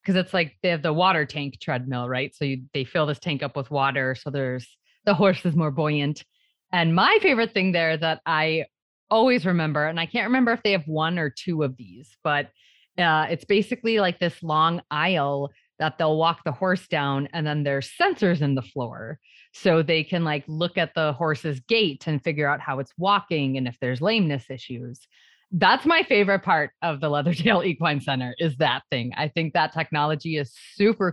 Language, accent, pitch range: English, American, 145-185 Hz